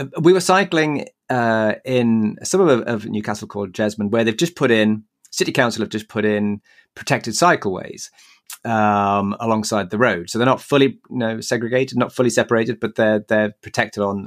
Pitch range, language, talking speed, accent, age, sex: 110-130 Hz, English, 180 wpm, British, 30-49, male